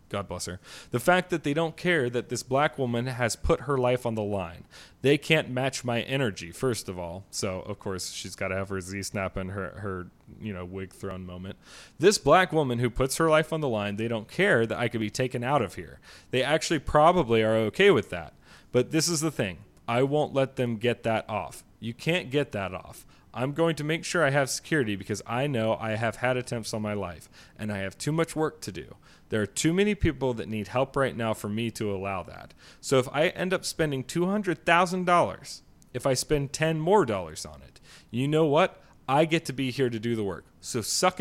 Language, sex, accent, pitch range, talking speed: English, male, American, 100-150 Hz, 235 wpm